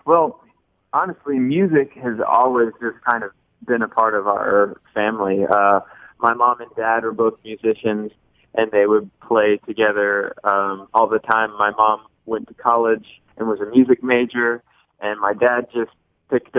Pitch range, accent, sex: 105-125 Hz, American, male